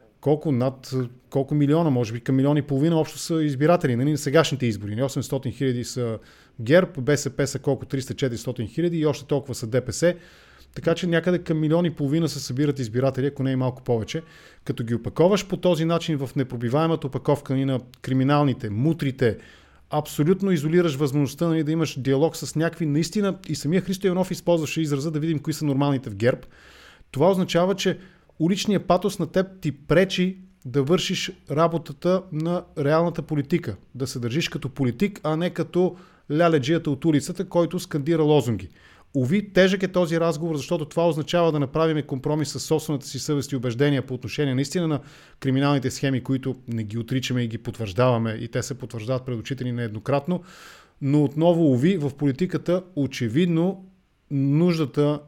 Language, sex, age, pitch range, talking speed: English, male, 30-49, 130-165 Hz, 160 wpm